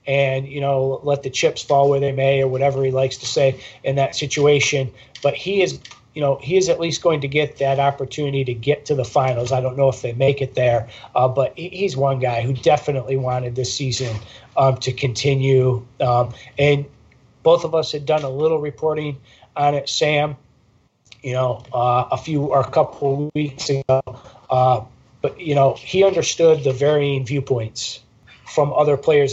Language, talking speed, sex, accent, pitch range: English, 195 wpm, male, American, 130-145 Hz